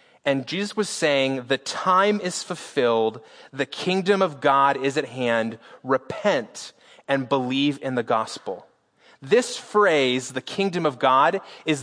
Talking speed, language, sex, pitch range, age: 140 wpm, English, male, 145-195 Hz, 30-49